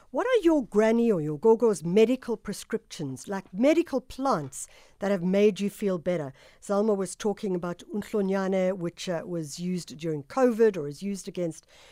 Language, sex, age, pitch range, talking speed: English, female, 60-79, 190-250 Hz, 165 wpm